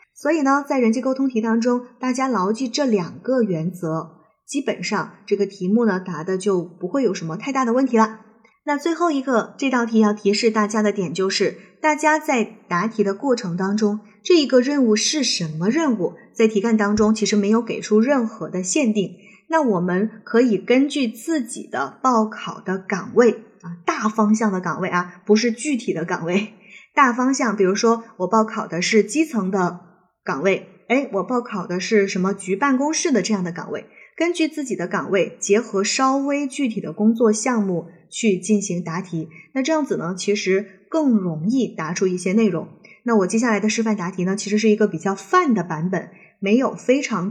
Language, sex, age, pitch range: Chinese, female, 20-39, 190-245 Hz